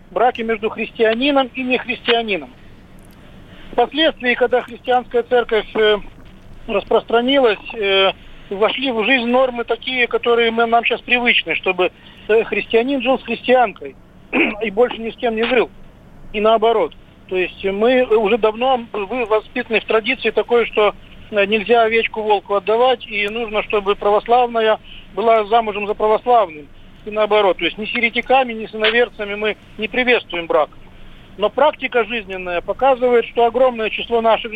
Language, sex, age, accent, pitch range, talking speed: Russian, male, 50-69, native, 210-240 Hz, 130 wpm